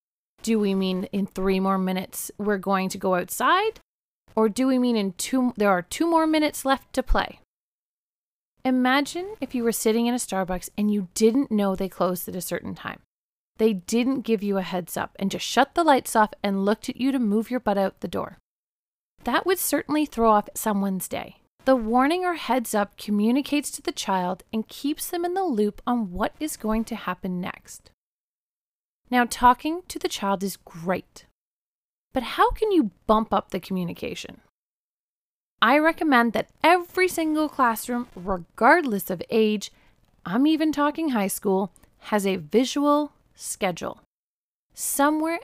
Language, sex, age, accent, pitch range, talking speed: English, female, 30-49, American, 200-290 Hz, 175 wpm